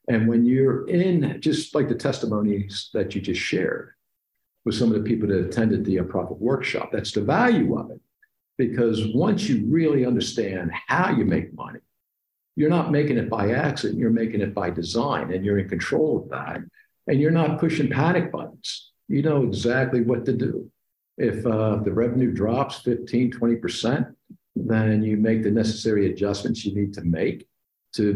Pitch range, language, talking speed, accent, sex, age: 95-115 Hz, English, 175 wpm, American, male, 50-69